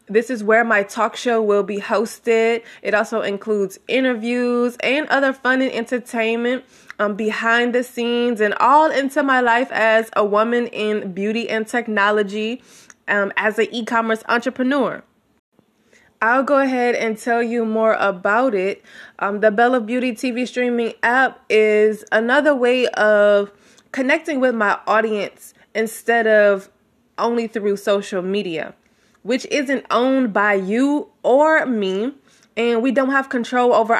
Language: English